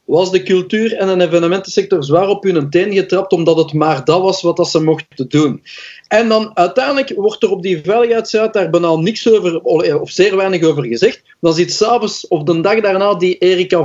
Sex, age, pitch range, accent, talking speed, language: male, 40-59, 180-230 Hz, Dutch, 205 wpm, Dutch